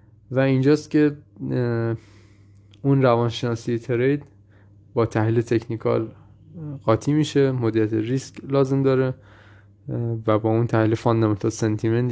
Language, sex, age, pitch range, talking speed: Persian, male, 20-39, 105-125 Hz, 105 wpm